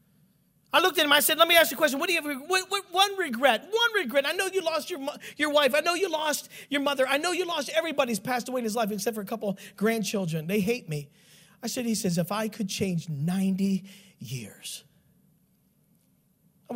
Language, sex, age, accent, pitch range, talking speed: English, male, 40-59, American, 170-235 Hz, 235 wpm